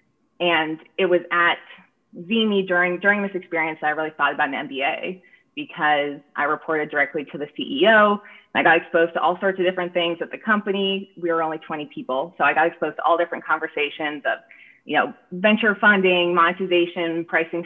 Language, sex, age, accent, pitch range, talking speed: English, female, 20-39, American, 160-190 Hz, 190 wpm